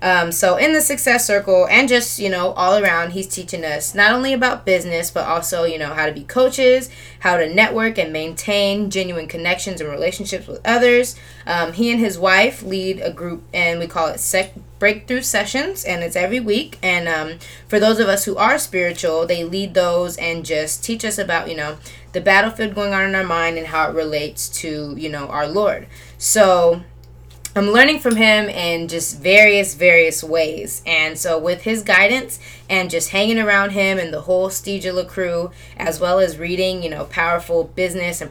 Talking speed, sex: 195 wpm, female